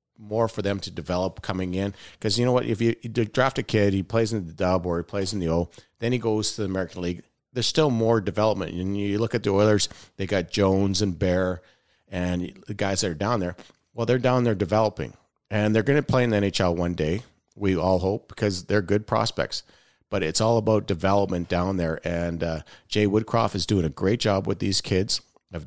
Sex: male